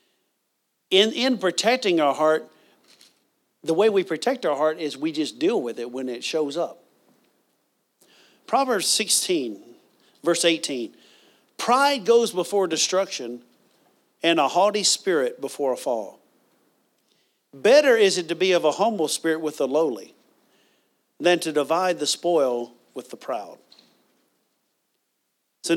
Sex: male